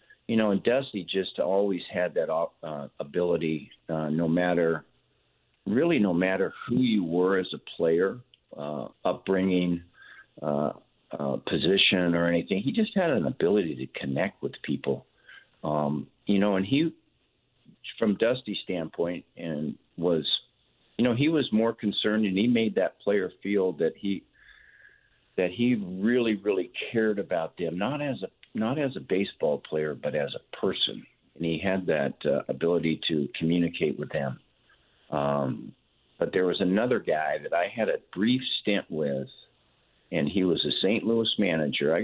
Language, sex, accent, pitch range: English, male, American, 80-110 Hz